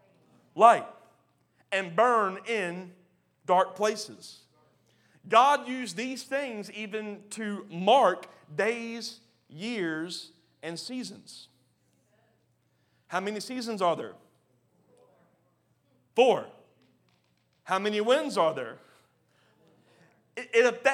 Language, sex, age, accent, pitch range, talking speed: English, male, 40-59, American, 190-235 Hz, 85 wpm